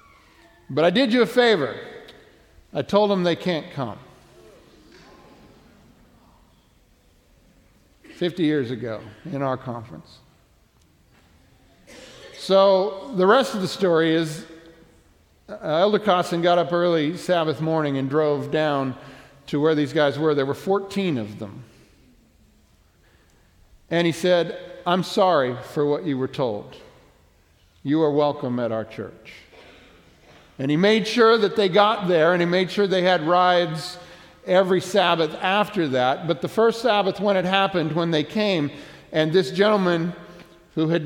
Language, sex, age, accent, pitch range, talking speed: English, male, 50-69, American, 140-195 Hz, 140 wpm